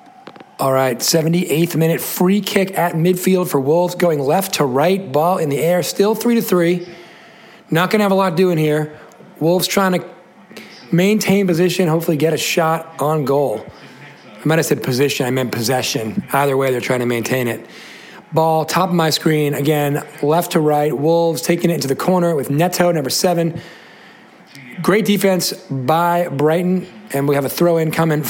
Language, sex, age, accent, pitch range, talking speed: English, male, 40-59, American, 140-180 Hz, 180 wpm